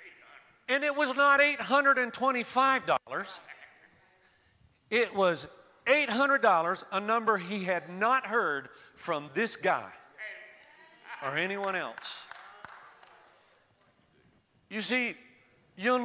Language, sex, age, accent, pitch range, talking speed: English, male, 40-59, American, 170-235 Hz, 85 wpm